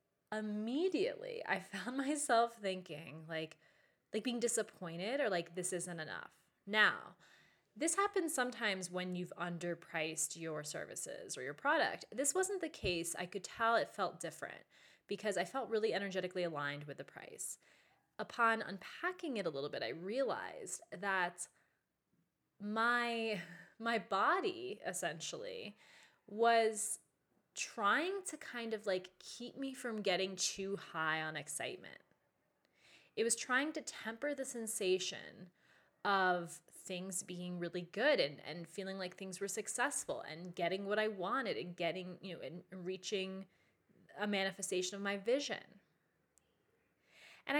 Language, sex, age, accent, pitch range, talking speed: English, female, 20-39, American, 180-240 Hz, 135 wpm